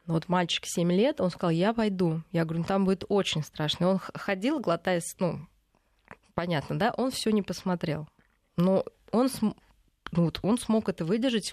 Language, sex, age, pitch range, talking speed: Russian, female, 20-39, 170-200 Hz, 160 wpm